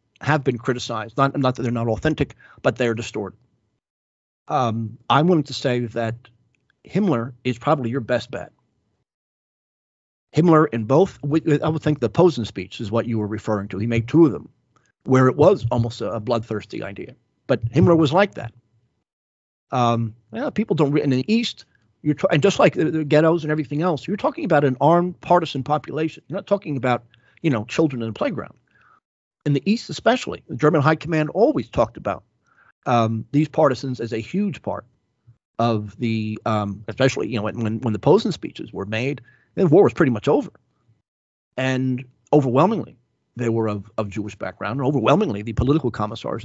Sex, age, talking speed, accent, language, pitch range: male, 40-59, 185 wpm, American, English, 110-150 Hz